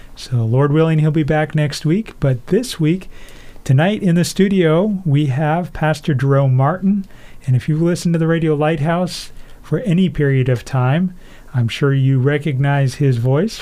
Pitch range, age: 130-160 Hz, 40-59